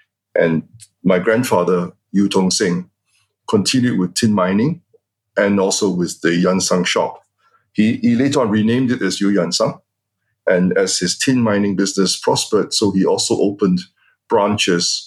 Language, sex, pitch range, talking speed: English, male, 90-105 Hz, 145 wpm